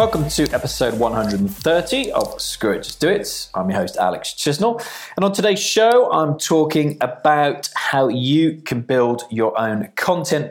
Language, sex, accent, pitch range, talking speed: English, male, British, 100-145 Hz, 165 wpm